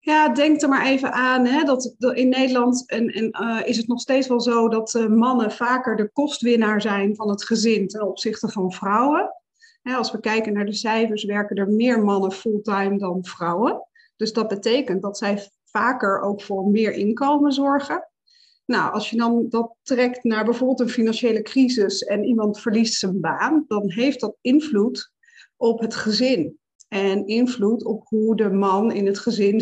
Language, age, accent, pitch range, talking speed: Dutch, 40-59, Dutch, 205-250 Hz, 180 wpm